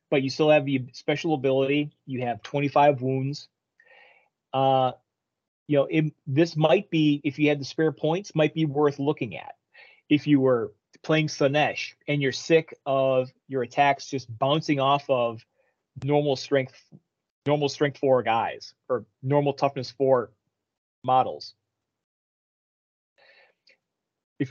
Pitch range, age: 135-160 Hz, 30-49